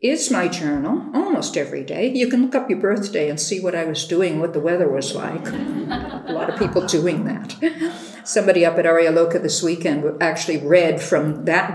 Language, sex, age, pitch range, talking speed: English, female, 60-79, 165-215 Hz, 200 wpm